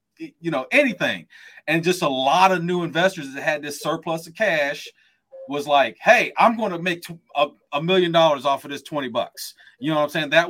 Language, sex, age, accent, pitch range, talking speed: English, male, 30-49, American, 145-190 Hz, 225 wpm